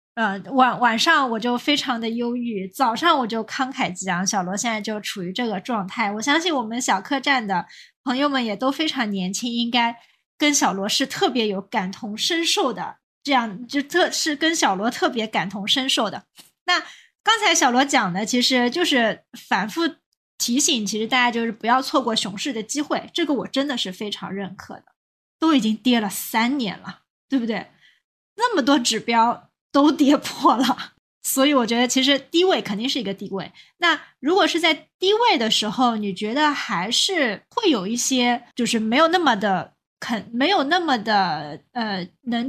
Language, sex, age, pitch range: Chinese, female, 20-39, 220-295 Hz